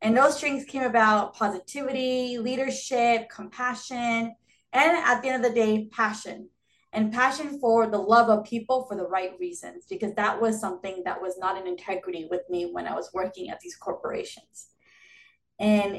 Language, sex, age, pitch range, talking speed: English, female, 20-39, 200-250 Hz, 175 wpm